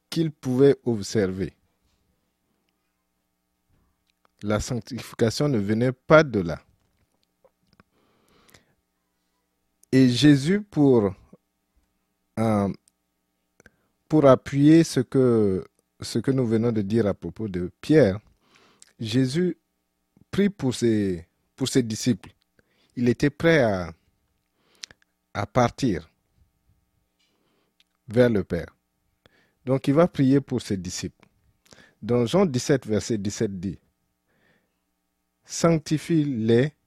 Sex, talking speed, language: male, 95 wpm, French